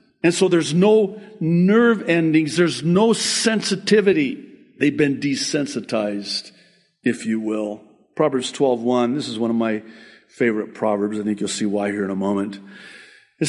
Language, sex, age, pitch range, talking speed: English, male, 60-79, 115-175 Hz, 150 wpm